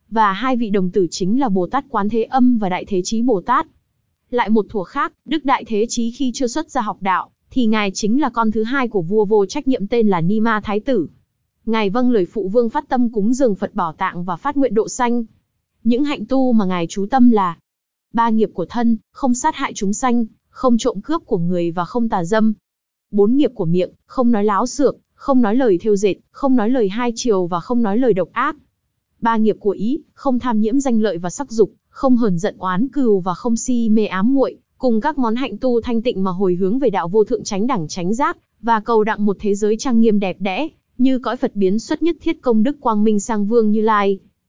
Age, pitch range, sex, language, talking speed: 20-39, 205-255 Hz, female, Vietnamese, 245 wpm